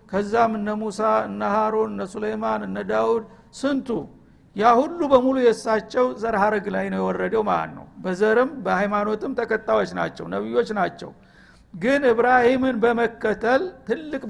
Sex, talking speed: male, 120 wpm